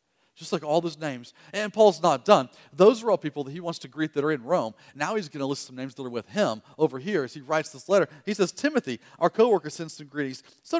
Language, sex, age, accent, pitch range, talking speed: English, male, 40-59, American, 145-230 Hz, 270 wpm